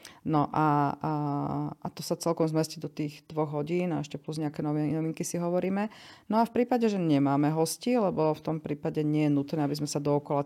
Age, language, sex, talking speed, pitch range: 40-59, Slovak, female, 210 wpm, 140-160 Hz